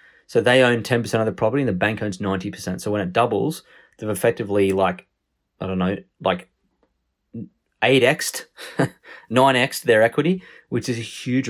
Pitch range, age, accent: 95-120 Hz, 20-39, Australian